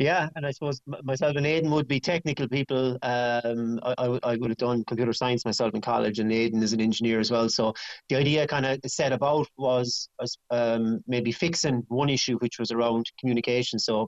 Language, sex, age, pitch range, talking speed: English, male, 30-49, 110-130 Hz, 200 wpm